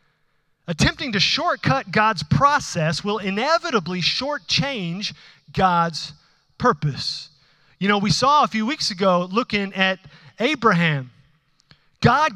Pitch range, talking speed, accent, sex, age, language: 160-230 Hz, 105 wpm, American, male, 30-49, English